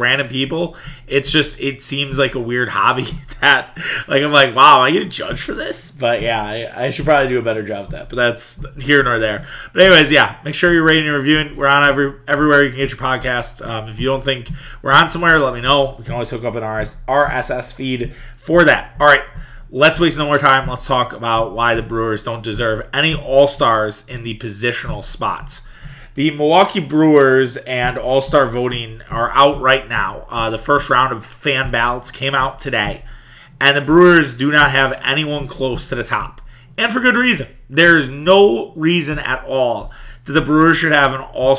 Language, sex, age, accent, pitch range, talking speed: English, male, 20-39, American, 125-150 Hz, 215 wpm